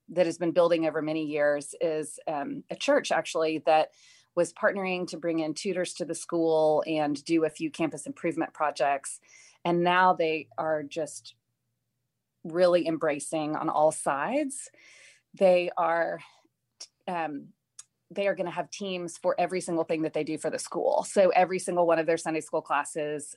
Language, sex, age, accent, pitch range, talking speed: English, female, 30-49, American, 155-180 Hz, 170 wpm